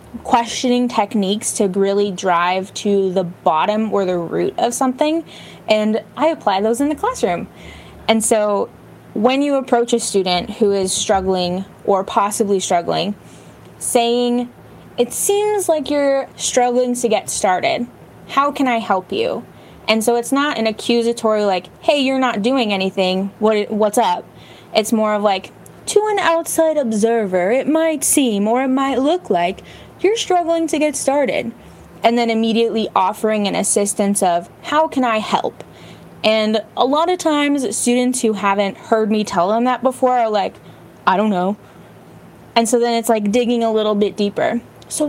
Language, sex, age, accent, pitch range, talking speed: English, female, 20-39, American, 200-260 Hz, 165 wpm